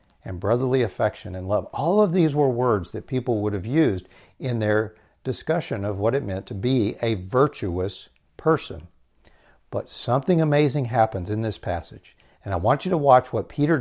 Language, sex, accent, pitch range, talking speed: English, male, American, 100-145 Hz, 180 wpm